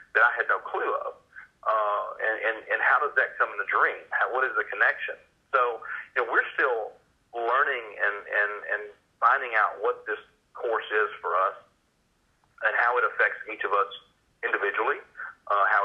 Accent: American